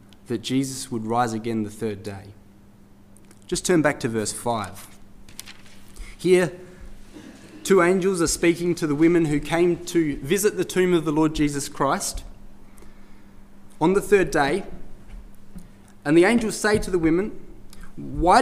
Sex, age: male, 20-39